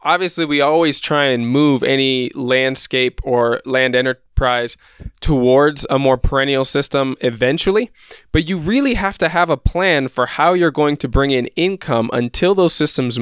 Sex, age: male, 20-39